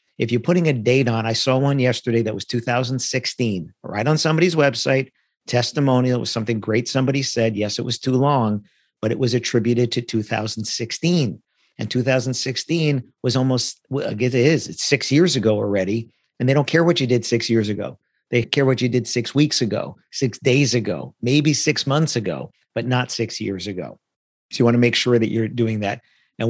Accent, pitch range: American, 115-130 Hz